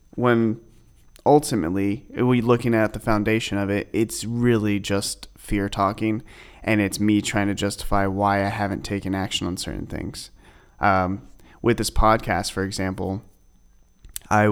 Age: 30-49